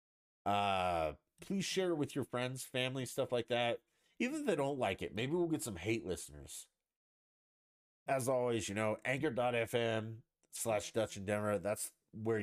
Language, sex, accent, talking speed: English, male, American, 165 wpm